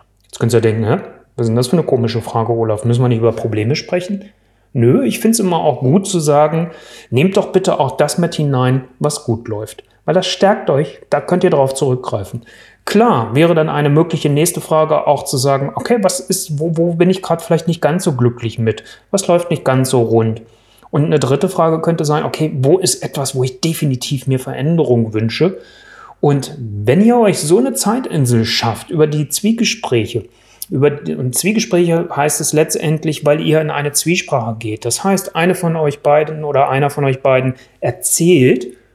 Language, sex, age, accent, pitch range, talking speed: German, male, 30-49, German, 120-175 Hz, 195 wpm